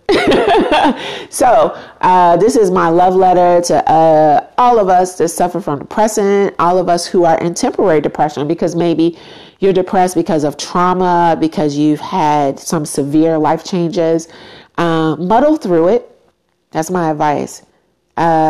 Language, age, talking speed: English, 40-59, 150 wpm